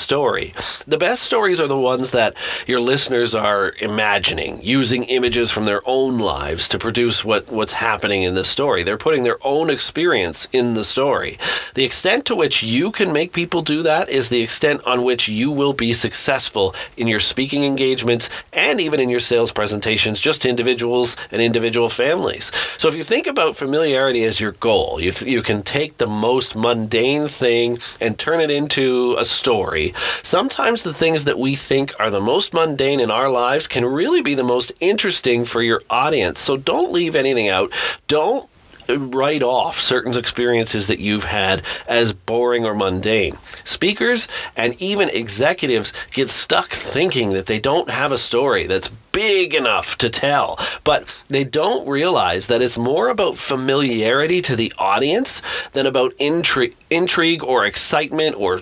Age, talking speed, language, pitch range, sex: 40-59, 170 wpm, English, 115-145 Hz, male